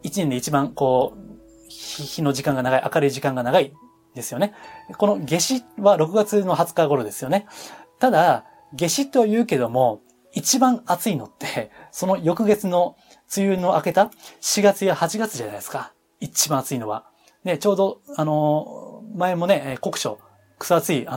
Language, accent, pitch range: Japanese, native, 135-205 Hz